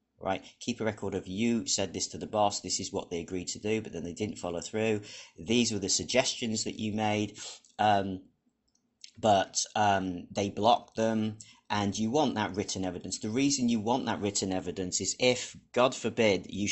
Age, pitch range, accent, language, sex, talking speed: 40-59, 95-110 Hz, British, English, male, 195 wpm